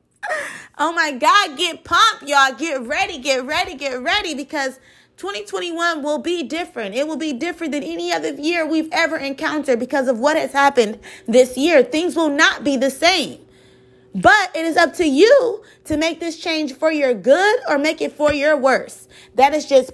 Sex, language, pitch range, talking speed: female, English, 265-340 Hz, 190 wpm